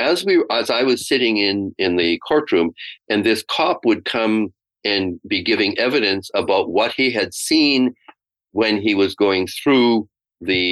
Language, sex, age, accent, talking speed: English, male, 50-69, American, 170 wpm